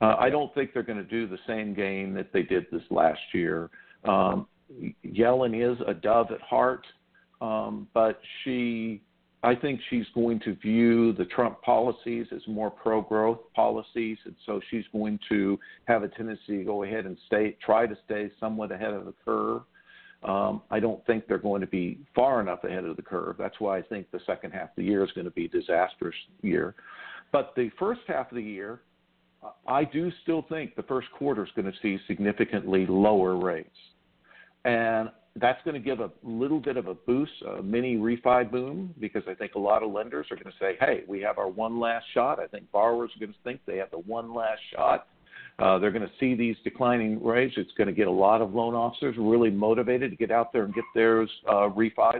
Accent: American